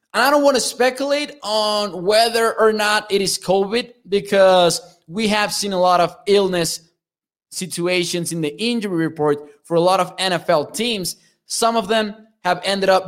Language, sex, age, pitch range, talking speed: English, male, 20-39, 170-205 Hz, 175 wpm